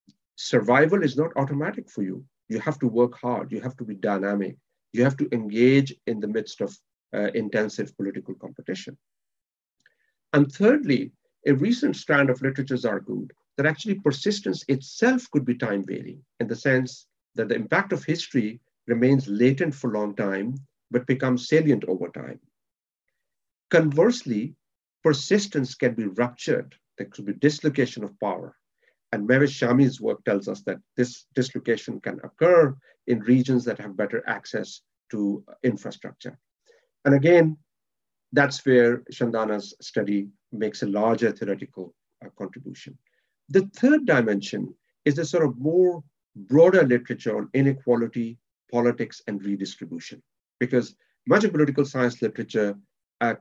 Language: English